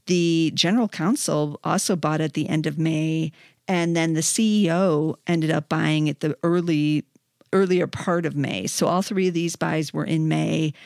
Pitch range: 155-175 Hz